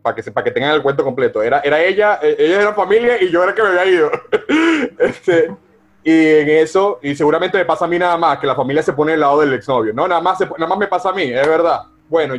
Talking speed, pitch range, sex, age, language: 270 wpm, 150-215 Hz, male, 30-49, Spanish